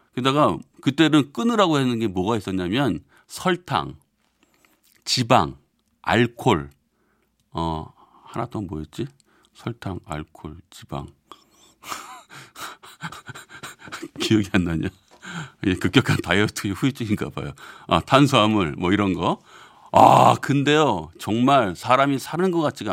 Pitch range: 100-150 Hz